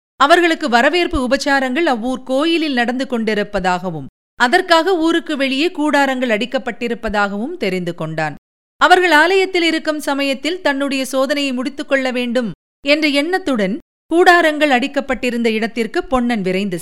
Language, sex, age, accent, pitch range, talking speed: Tamil, female, 50-69, native, 230-310 Hz, 100 wpm